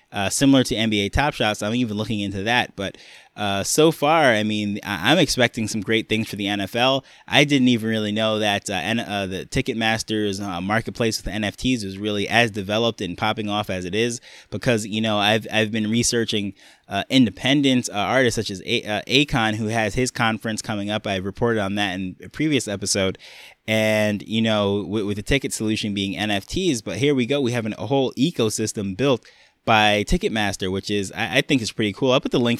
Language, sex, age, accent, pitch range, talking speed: English, male, 20-39, American, 105-125 Hz, 215 wpm